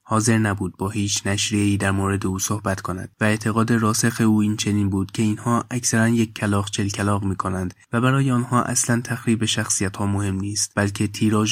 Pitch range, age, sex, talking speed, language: 100-110 Hz, 20-39, male, 190 wpm, Persian